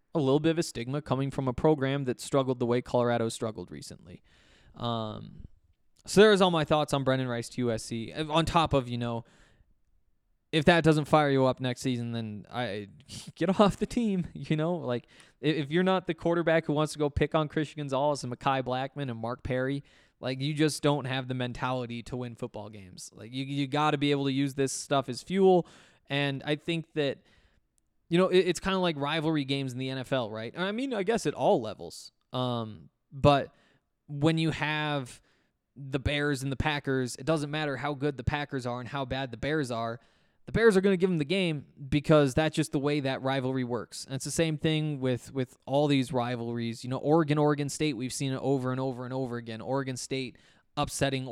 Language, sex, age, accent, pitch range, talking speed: English, male, 20-39, American, 125-155 Hz, 215 wpm